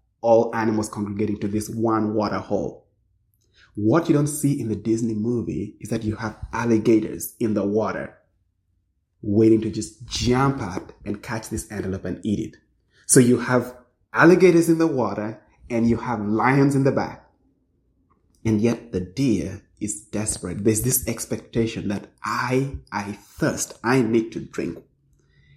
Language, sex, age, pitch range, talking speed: English, male, 30-49, 105-130 Hz, 155 wpm